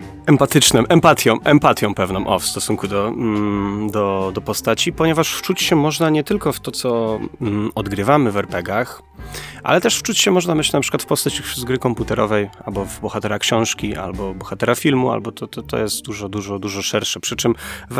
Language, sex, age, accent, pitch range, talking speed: Polish, male, 30-49, native, 100-120 Hz, 185 wpm